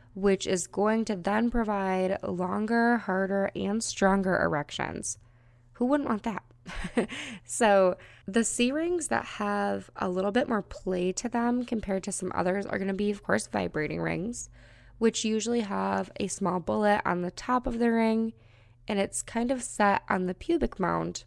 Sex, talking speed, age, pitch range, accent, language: female, 170 wpm, 20-39, 180-225 Hz, American, English